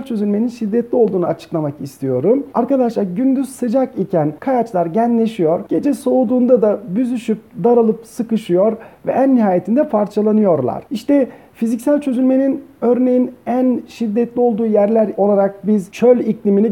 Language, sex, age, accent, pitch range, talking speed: Turkish, male, 40-59, native, 195-250 Hz, 120 wpm